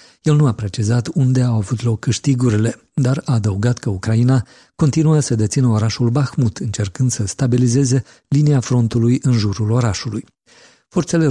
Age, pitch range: 50-69, 110-130 Hz